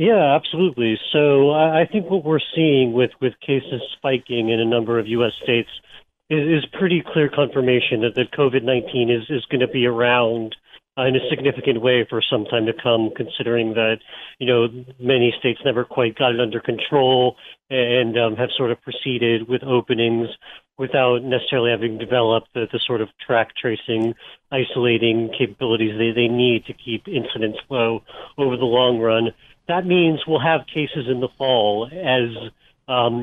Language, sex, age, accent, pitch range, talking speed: English, male, 40-59, American, 115-135 Hz, 170 wpm